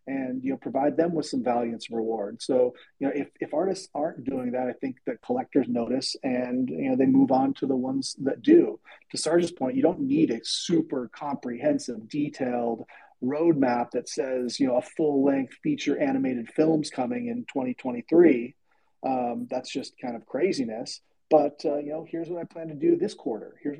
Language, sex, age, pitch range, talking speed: English, male, 40-59, 125-170 Hz, 195 wpm